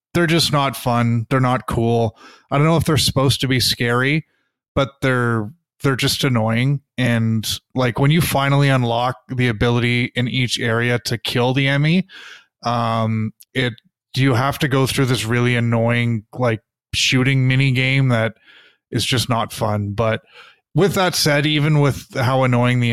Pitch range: 115-140 Hz